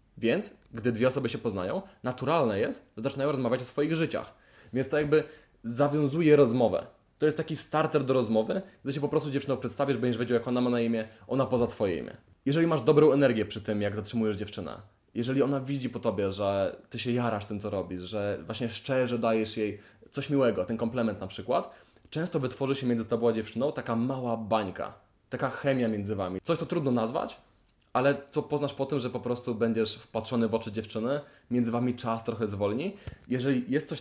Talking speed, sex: 200 wpm, male